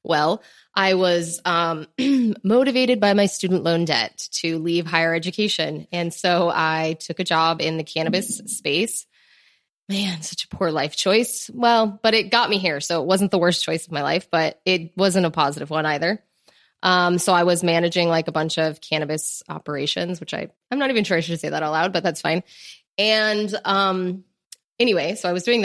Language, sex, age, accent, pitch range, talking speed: English, female, 20-39, American, 160-195 Hz, 200 wpm